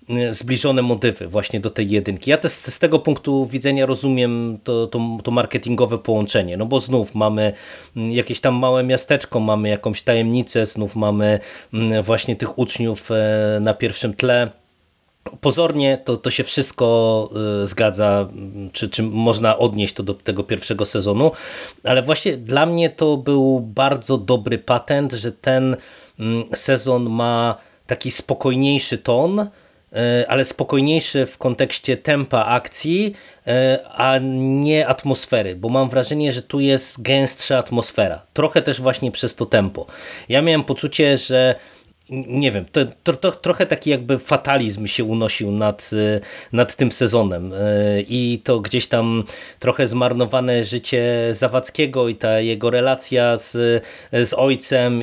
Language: Polish